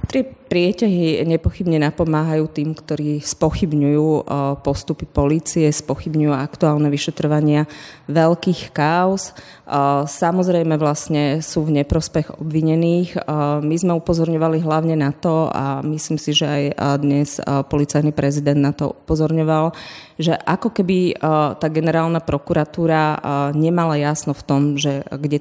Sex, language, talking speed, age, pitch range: female, Slovak, 115 wpm, 30-49, 145-160 Hz